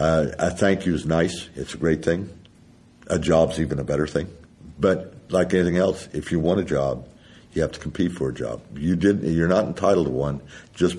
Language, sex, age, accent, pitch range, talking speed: English, male, 60-79, American, 75-90 Hz, 205 wpm